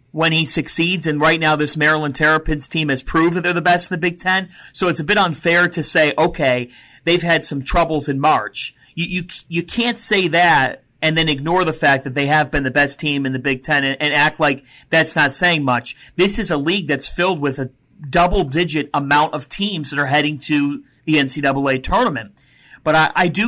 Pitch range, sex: 140-180 Hz, male